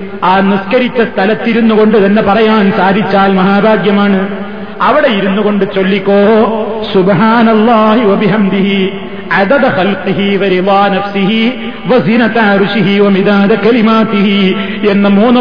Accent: native